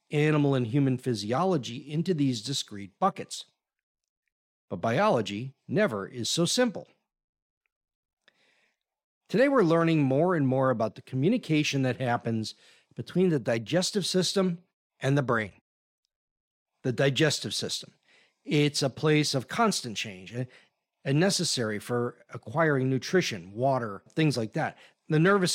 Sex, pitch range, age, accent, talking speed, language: male, 120-170 Hz, 50-69, American, 120 wpm, English